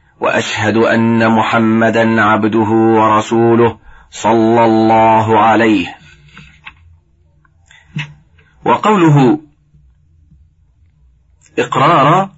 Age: 40-59